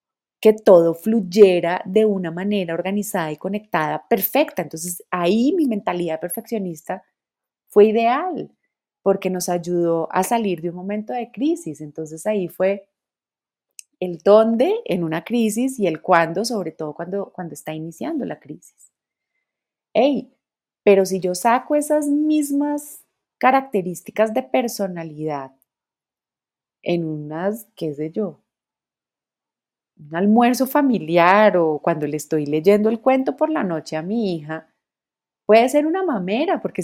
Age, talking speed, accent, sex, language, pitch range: 30-49, 135 wpm, Colombian, female, Spanish, 175-235 Hz